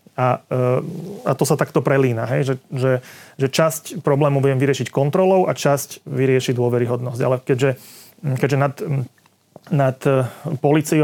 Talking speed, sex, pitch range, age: 130 wpm, male, 130-145 Hz, 30-49